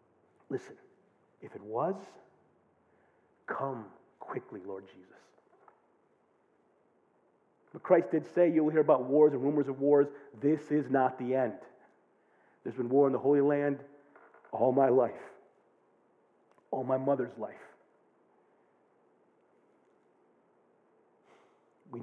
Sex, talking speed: male, 110 wpm